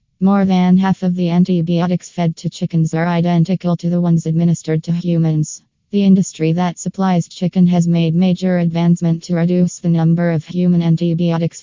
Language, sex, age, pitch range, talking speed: English, female, 20-39, 165-180 Hz, 170 wpm